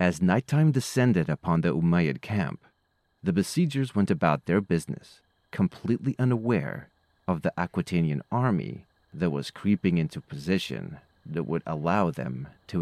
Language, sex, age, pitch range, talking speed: English, male, 30-49, 90-120 Hz, 135 wpm